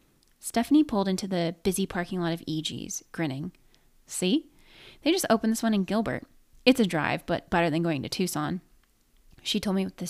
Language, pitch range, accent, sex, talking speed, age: English, 170-220 Hz, American, female, 190 wpm, 20-39